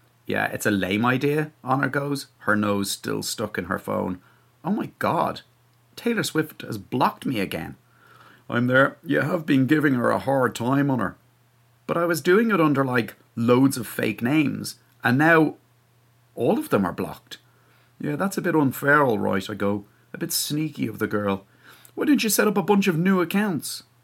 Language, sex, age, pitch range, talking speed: English, male, 30-49, 115-155 Hz, 190 wpm